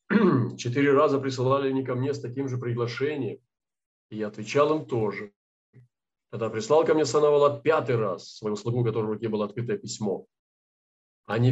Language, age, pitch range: Russian, 40-59, 115-140 Hz